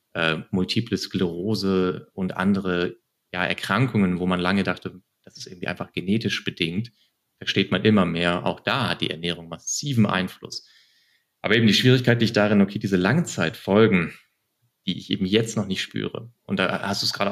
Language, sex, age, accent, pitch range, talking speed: German, male, 30-49, German, 90-110 Hz, 175 wpm